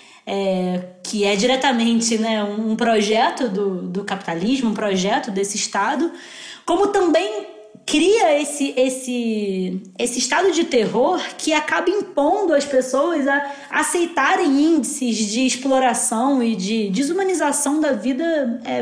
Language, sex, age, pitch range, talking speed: Portuguese, female, 20-39, 215-270 Hz, 125 wpm